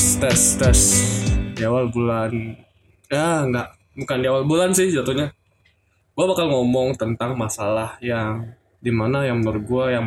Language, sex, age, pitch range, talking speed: Indonesian, male, 20-39, 110-140 Hz, 135 wpm